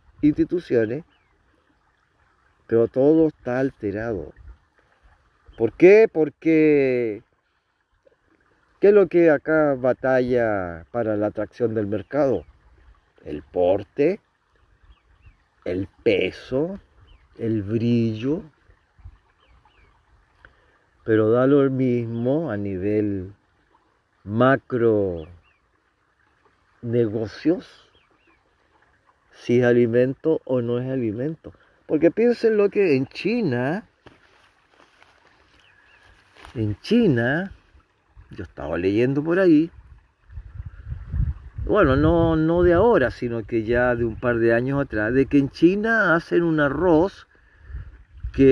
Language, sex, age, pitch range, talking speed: Spanish, male, 50-69, 110-160 Hz, 95 wpm